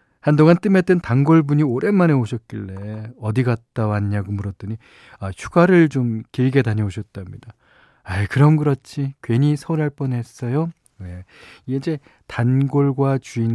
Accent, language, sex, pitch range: native, Korean, male, 110-145 Hz